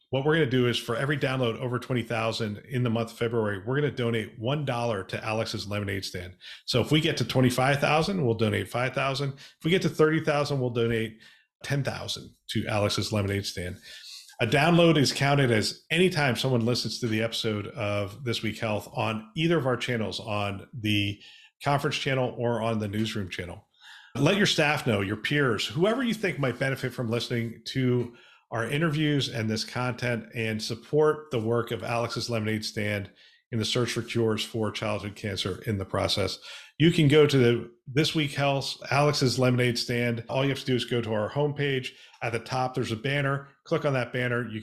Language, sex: English, male